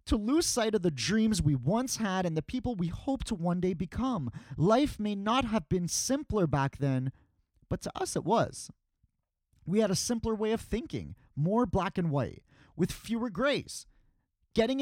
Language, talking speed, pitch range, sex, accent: English, 185 wpm, 155-235 Hz, male, American